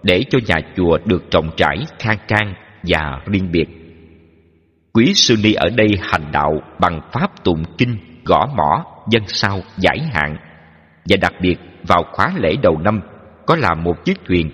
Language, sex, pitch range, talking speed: Vietnamese, male, 80-110 Hz, 175 wpm